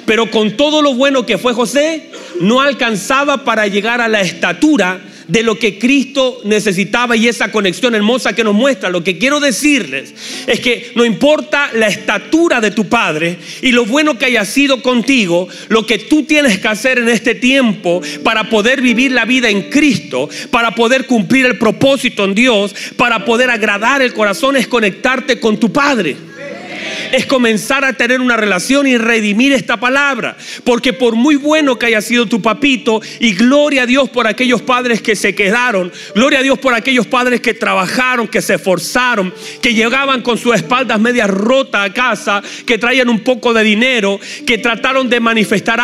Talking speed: 180 wpm